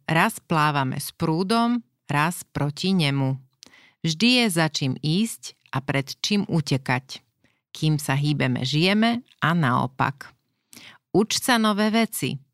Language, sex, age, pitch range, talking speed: Slovak, female, 40-59, 140-185 Hz, 125 wpm